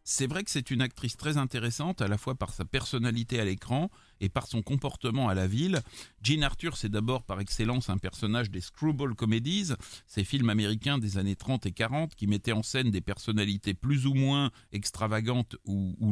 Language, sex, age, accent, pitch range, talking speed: French, male, 40-59, French, 110-150 Hz, 200 wpm